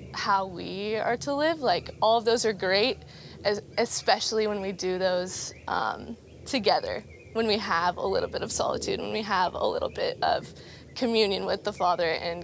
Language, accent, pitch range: English, American, 200-240 Hz